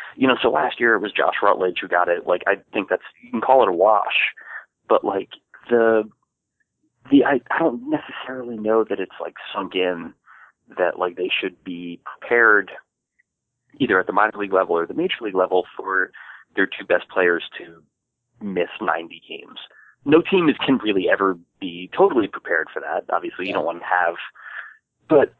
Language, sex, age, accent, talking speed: English, male, 30-49, American, 185 wpm